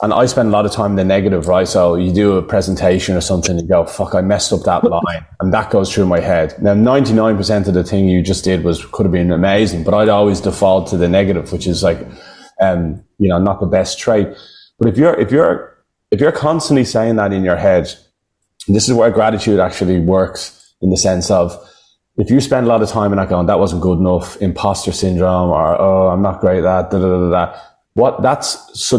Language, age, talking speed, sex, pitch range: English, 20-39, 240 wpm, male, 90-105 Hz